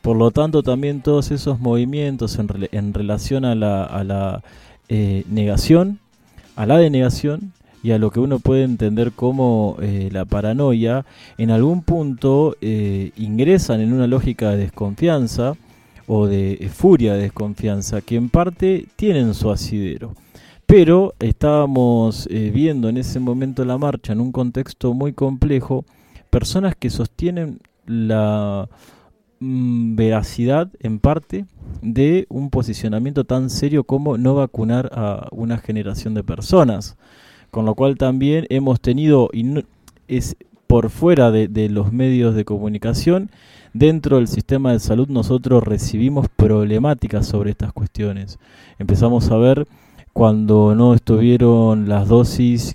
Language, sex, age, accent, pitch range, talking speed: English, male, 20-39, Argentinian, 105-135 Hz, 135 wpm